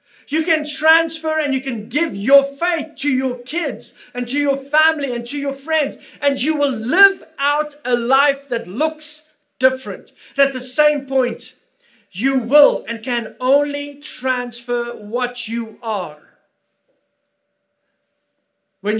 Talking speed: 140 wpm